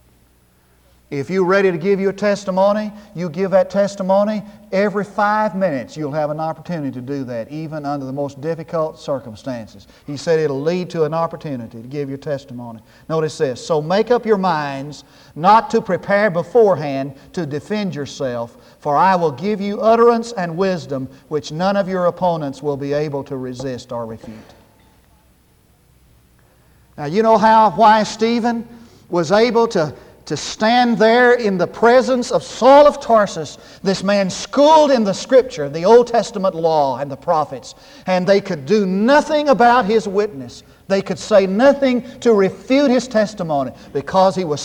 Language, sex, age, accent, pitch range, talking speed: English, male, 50-69, American, 140-210 Hz, 165 wpm